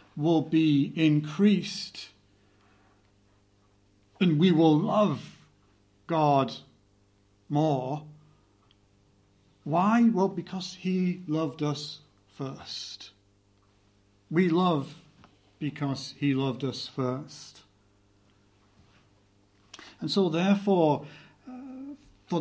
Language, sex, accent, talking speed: English, male, British, 75 wpm